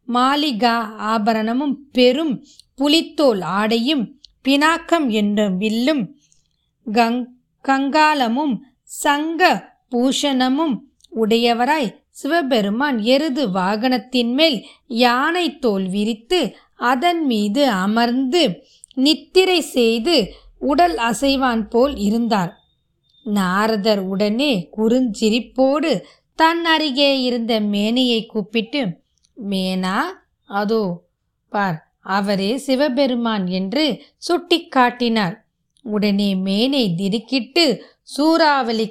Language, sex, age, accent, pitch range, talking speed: Tamil, female, 20-39, native, 215-280 Hz, 75 wpm